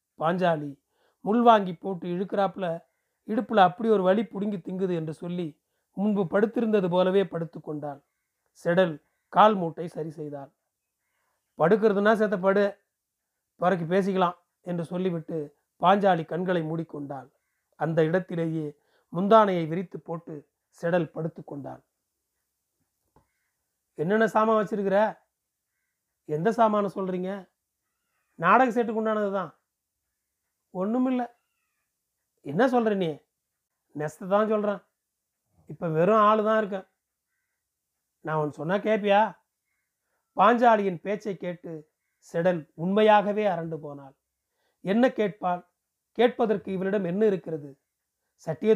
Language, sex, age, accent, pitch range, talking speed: Tamil, male, 30-49, native, 165-215 Hz, 95 wpm